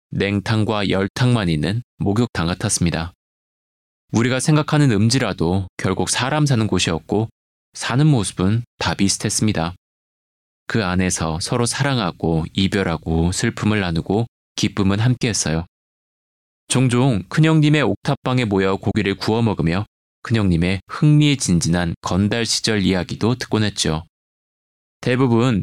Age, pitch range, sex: 20-39, 90-125 Hz, male